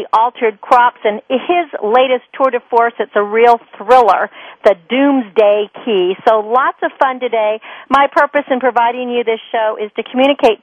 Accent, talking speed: American, 170 wpm